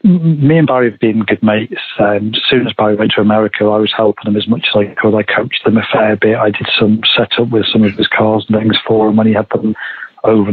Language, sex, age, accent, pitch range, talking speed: English, male, 40-59, British, 105-115 Hz, 275 wpm